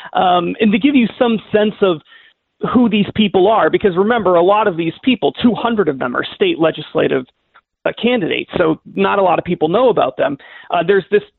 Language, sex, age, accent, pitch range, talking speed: English, male, 30-49, American, 160-195 Hz, 200 wpm